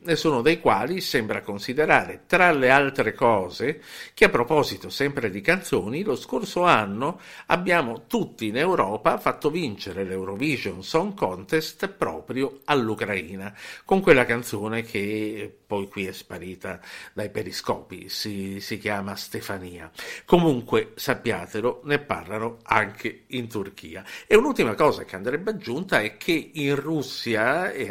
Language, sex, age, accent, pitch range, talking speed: Italian, male, 50-69, native, 105-150 Hz, 130 wpm